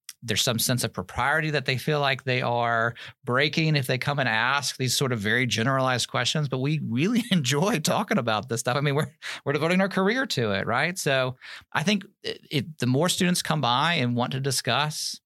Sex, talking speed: male, 215 wpm